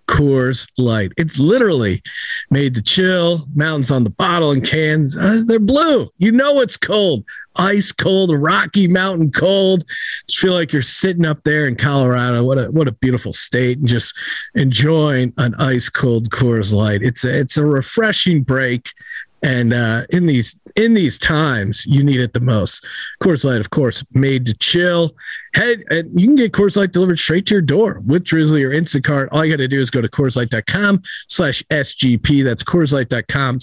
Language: English